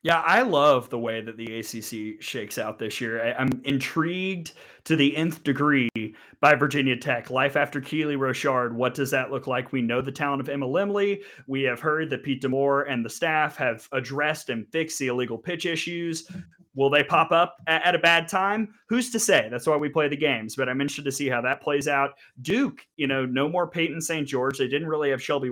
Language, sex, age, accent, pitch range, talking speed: English, male, 30-49, American, 125-155 Hz, 220 wpm